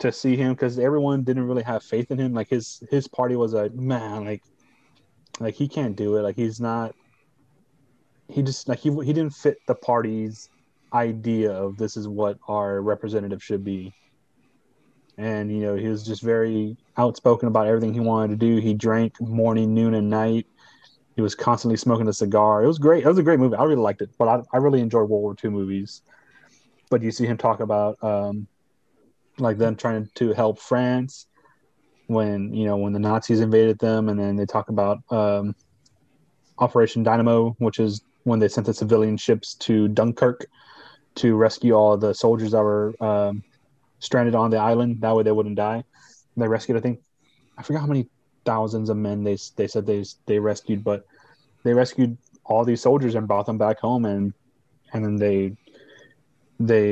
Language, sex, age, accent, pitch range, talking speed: English, male, 30-49, American, 105-125 Hz, 190 wpm